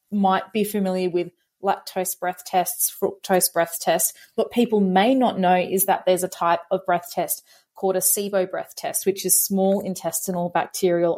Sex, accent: female, Australian